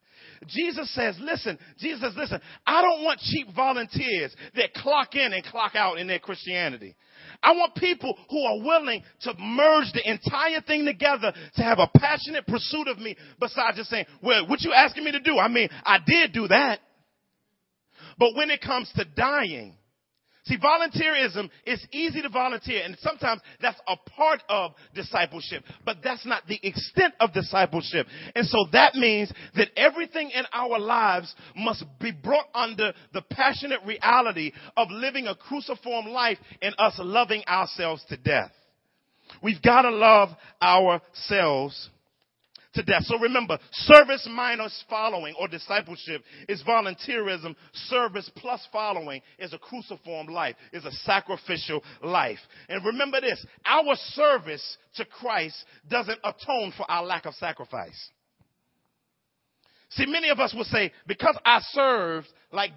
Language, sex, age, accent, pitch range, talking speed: English, male, 40-59, American, 185-270 Hz, 150 wpm